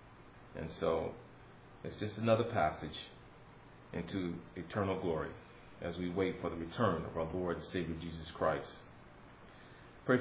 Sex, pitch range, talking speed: male, 90-110 Hz, 135 wpm